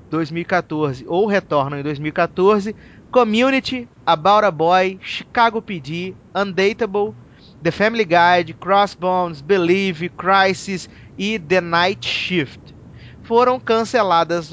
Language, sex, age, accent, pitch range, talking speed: Portuguese, male, 20-39, Brazilian, 165-210 Hz, 100 wpm